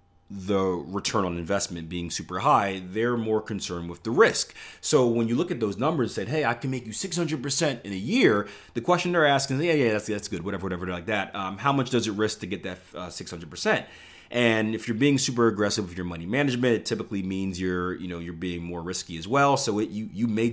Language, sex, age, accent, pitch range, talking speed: English, male, 30-49, American, 95-125 Hz, 245 wpm